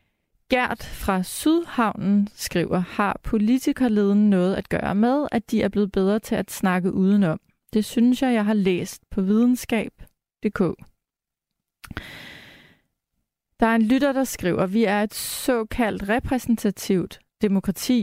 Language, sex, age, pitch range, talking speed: Danish, female, 30-49, 190-230 Hz, 130 wpm